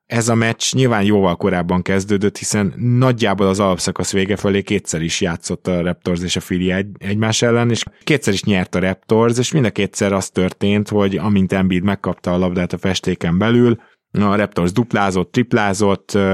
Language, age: Hungarian, 20-39